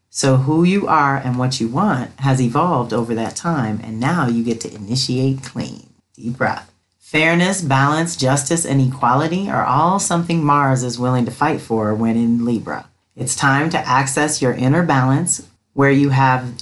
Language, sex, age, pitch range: English, female, 40-59, 120-155 Hz